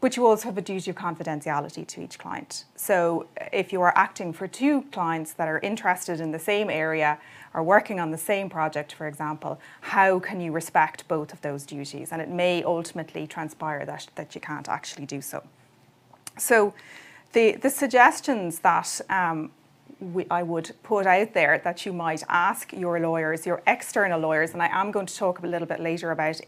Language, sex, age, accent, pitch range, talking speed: English, female, 30-49, Irish, 165-205 Hz, 195 wpm